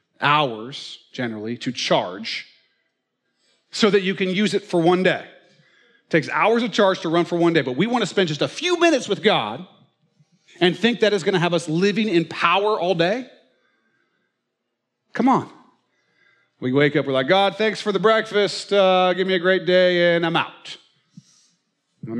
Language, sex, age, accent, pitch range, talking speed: English, male, 40-59, American, 155-215 Hz, 185 wpm